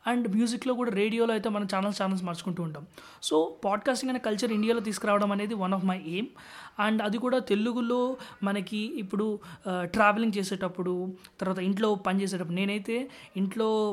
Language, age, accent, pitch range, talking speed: Telugu, 20-39, native, 180-220 Hz, 145 wpm